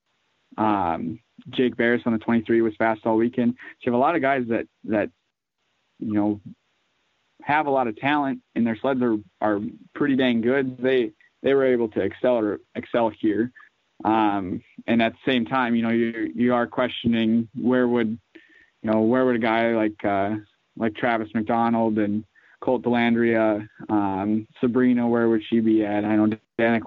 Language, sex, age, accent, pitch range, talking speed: English, male, 20-39, American, 110-125 Hz, 180 wpm